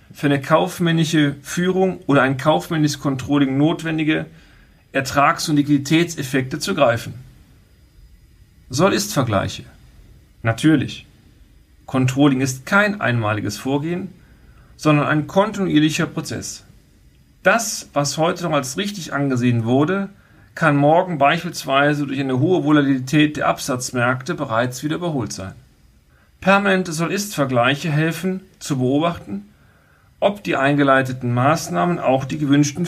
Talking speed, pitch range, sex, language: 105 wpm, 130-165 Hz, male, German